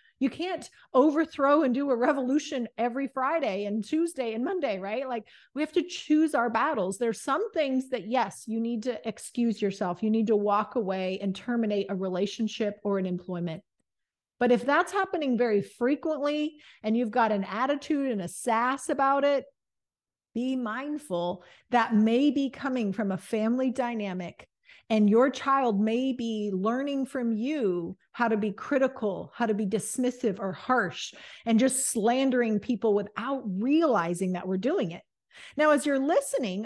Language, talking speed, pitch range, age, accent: English, 165 wpm, 210-275 Hz, 40-59, American